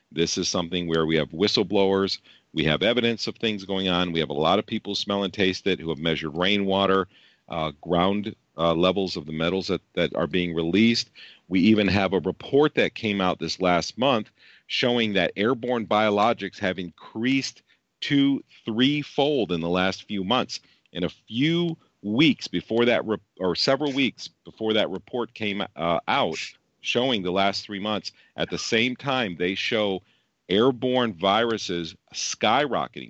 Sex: male